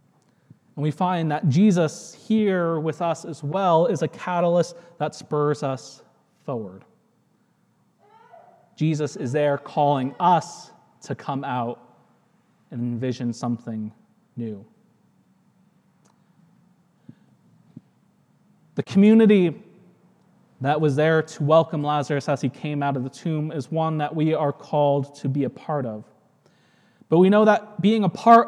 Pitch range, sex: 150-185 Hz, male